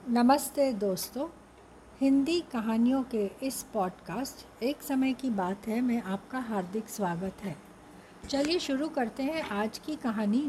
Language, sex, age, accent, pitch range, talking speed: Hindi, female, 60-79, native, 215-275 Hz, 135 wpm